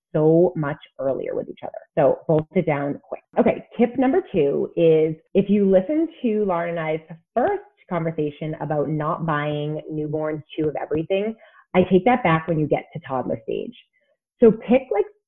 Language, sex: English, female